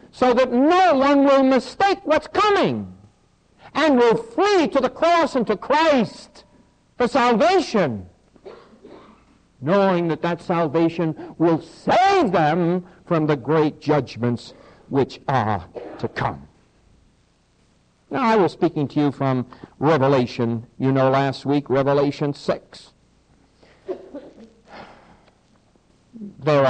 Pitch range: 140-195 Hz